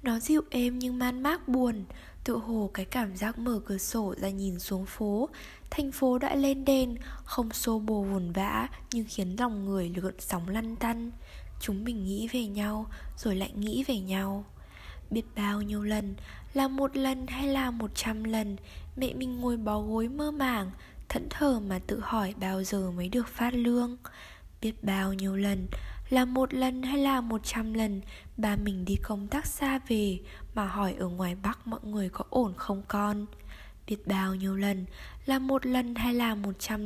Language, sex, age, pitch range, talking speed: Vietnamese, female, 10-29, 195-245 Hz, 190 wpm